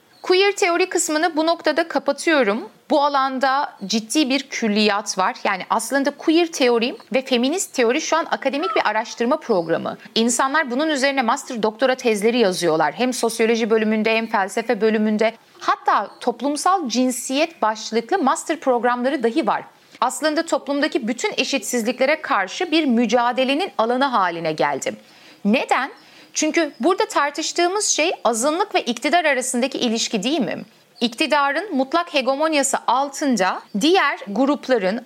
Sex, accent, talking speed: female, native, 130 wpm